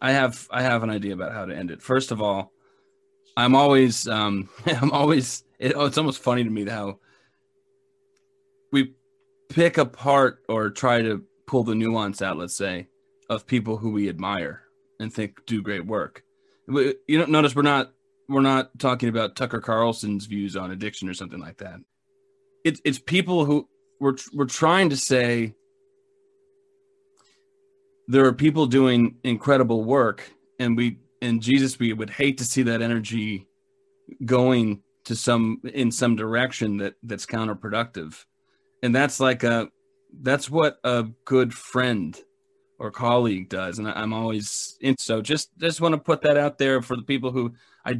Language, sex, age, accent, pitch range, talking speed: English, male, 30-49, American, 115-150 Hz, 165 wpm